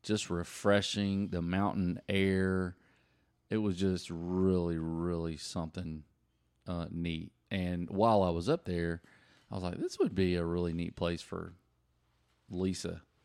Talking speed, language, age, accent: 140 wpm, English, 30-49, American